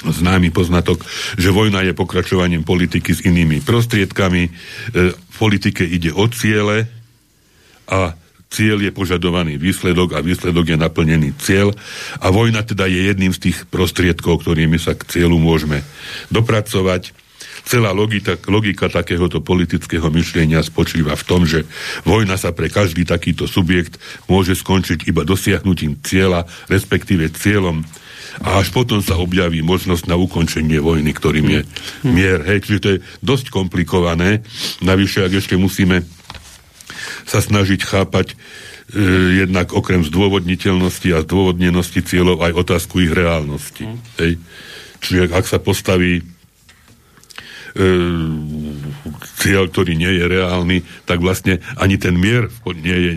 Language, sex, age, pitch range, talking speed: Slovak, male, 60-79, 85-95 Hz, 130 wpm